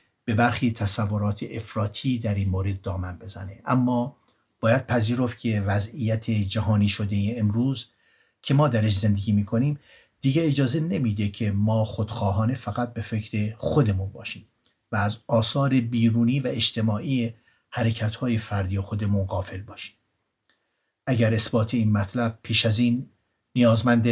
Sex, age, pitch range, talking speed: male, 60-79, 105-120 Hz, 130 wpm